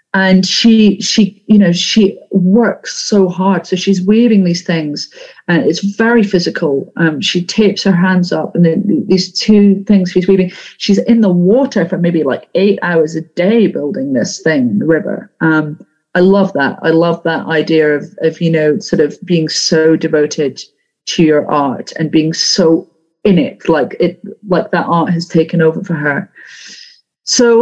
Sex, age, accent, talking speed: female, 40-59, British, 180 wpm